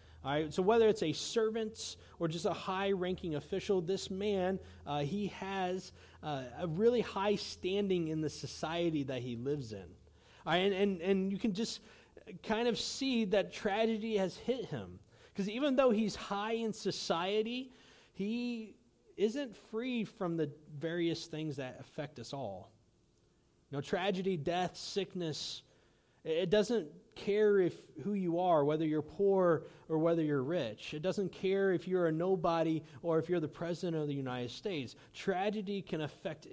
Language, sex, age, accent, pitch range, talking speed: English, male, 30-49, American, 150-205 Hz, 165 wpm